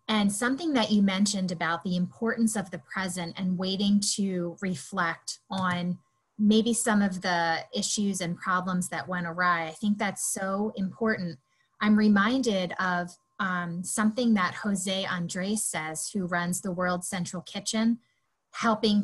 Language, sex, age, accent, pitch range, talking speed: English, female, 20-39, American, 175-215 Hz, 150 wpm